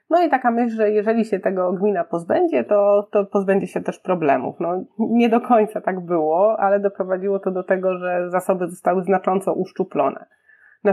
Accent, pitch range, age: native, 175-205 Hz, 20-39